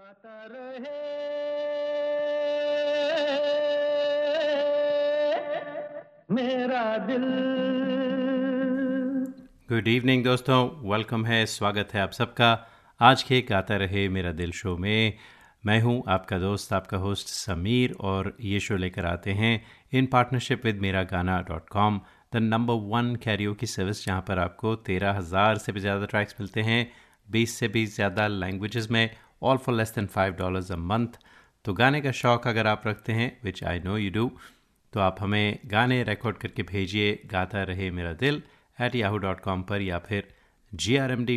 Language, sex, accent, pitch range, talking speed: Hindi, male, native, 100-130 Hz, 140 wpm